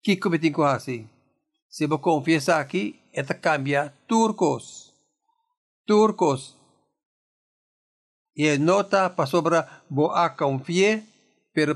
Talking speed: 95 wpm